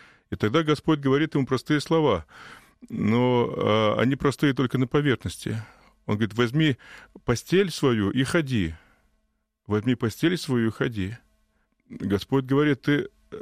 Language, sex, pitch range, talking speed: Russian, male, 110-145 Hz, 125 wpm